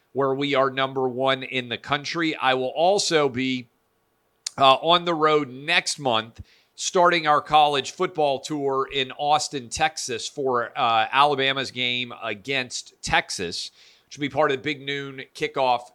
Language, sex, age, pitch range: English, male, 40-59, 115-145 Hz